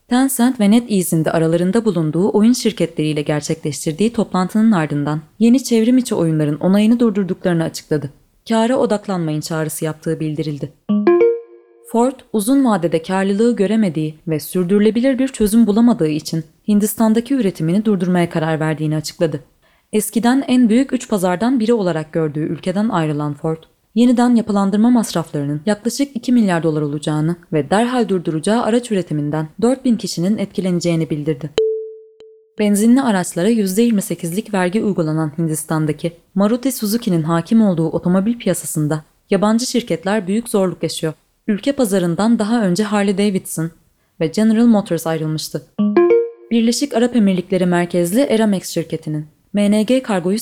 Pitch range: 160-225 Hz